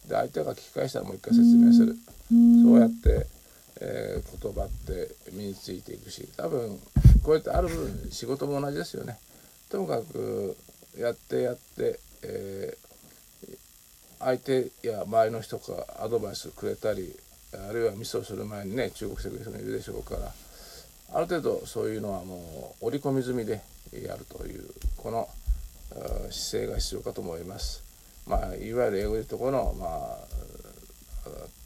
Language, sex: Japanese, male